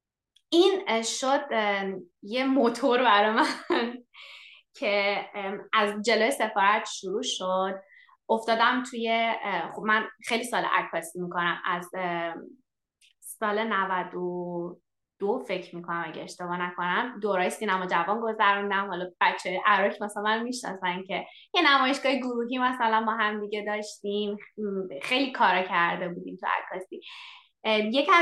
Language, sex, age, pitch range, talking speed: Persian, female, 20-39, 200-260 Hz, 120 wpm